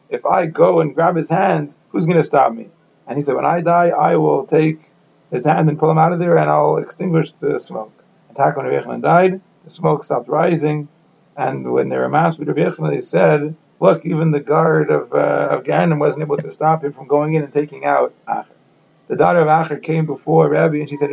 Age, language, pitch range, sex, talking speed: 30-49, English, 145-165 Hz, male, 235 wpm